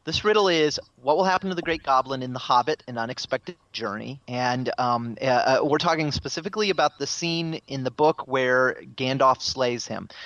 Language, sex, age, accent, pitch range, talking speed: English, male, 30-49, American, 120-145 Hz, 185 wpm